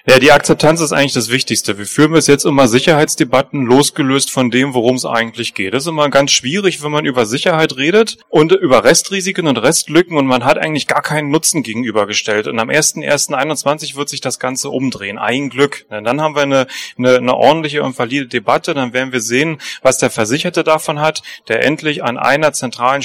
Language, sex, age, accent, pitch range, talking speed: German, male, 30-49, German, 125-150 Hz, 205 wpm